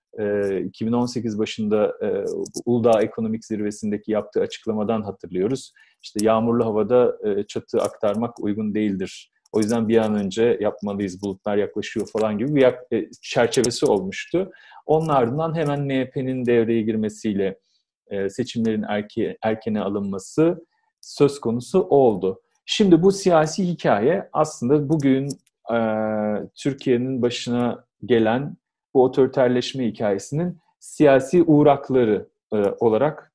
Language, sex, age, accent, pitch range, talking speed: Turkish, male, 40-59, native, 110-160 Hz, 100 wpm